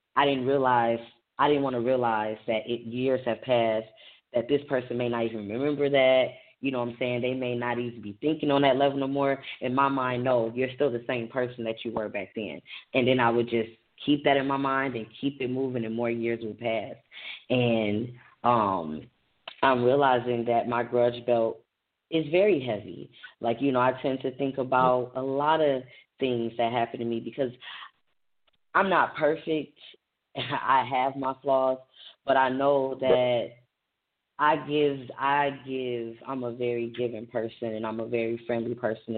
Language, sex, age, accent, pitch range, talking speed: English, female, 10-29, American, 115-135 Hz, 190 wpm